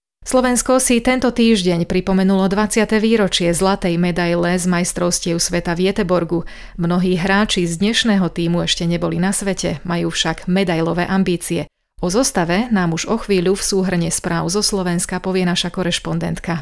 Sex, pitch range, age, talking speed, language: female, 175-210 Hz, 30-49, 145 wpm, Slovak